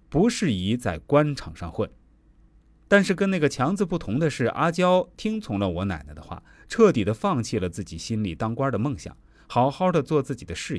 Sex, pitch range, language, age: male, 95-150 Hz, Chinese, 30-49